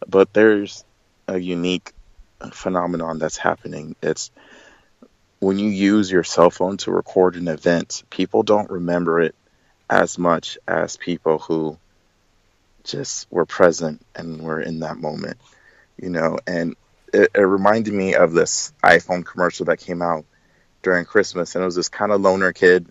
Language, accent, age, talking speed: English, American, 30-49, 155 wpm